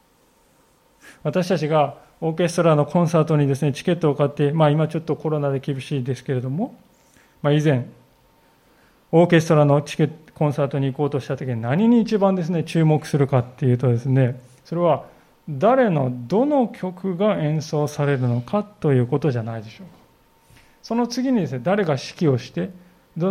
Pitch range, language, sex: 135-190 Hz, Japanese, male